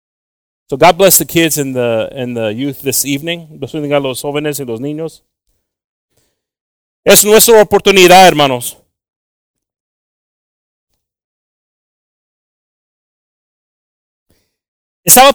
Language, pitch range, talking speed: English, 130-180 Hz, 85 wpm